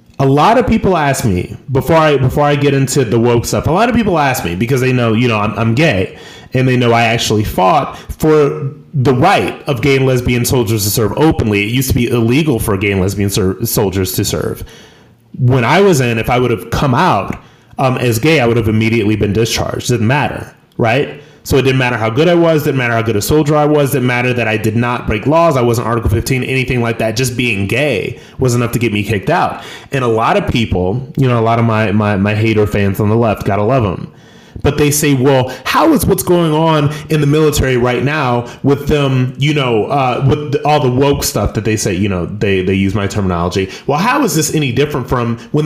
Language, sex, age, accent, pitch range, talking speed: English, male, 30-49, American, 110-145 Hz, 250 wpm